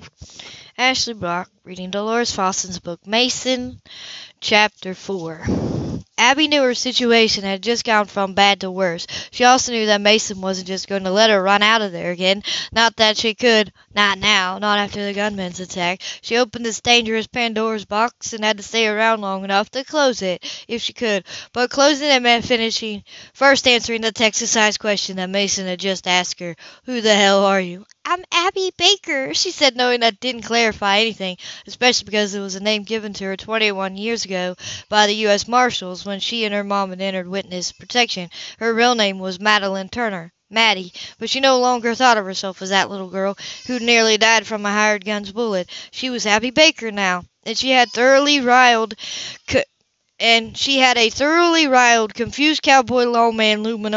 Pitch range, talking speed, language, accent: 195-235 Hz, 190 wpm, English, American